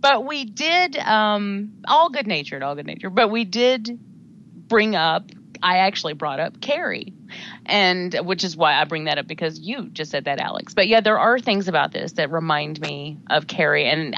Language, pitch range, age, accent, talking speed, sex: English, 170-225 Hz, 30-49, American, 200 wpm, female